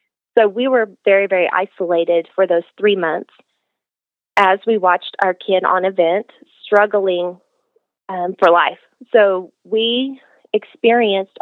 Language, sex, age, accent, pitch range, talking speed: English, female, 30-49, American, 185-225 Hz, 125 wpm